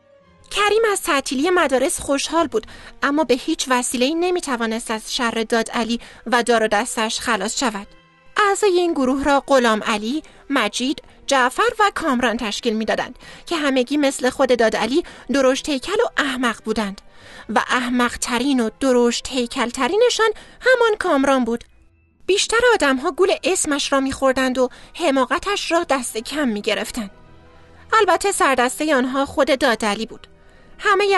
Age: 30-49